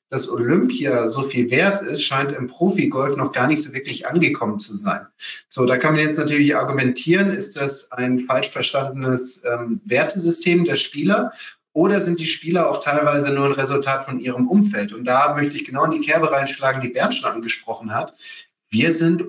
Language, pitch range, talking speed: German, 135-170 Hz, 190 wpm